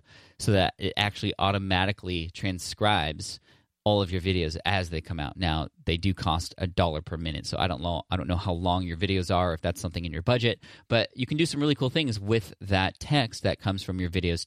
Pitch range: 90-100 Hz